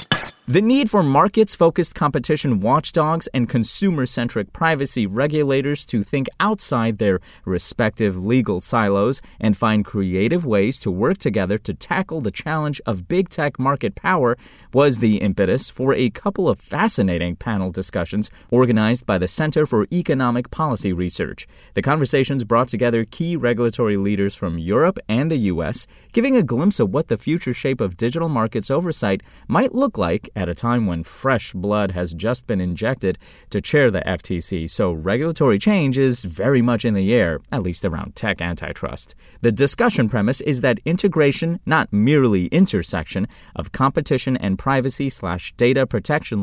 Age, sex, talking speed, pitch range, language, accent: 30-49, male, 155 wpm, 100-150 Hz, English, American